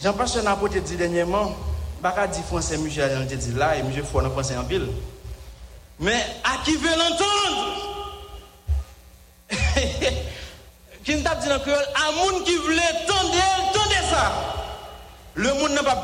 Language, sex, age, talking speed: English, male, 50-69, 125 wpm